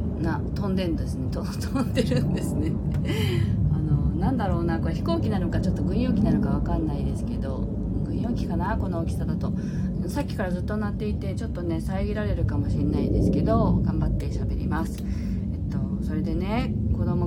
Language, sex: Japanese, female